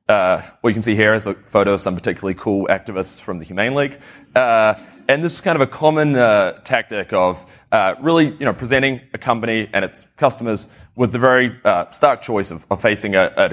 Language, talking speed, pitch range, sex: English, 215 wpm, 100-130 Hz, male